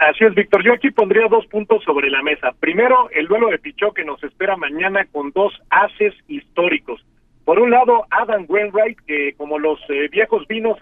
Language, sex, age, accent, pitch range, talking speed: Spanish, male, 50-69, Mexican, 175-230 Hz, 195 wpm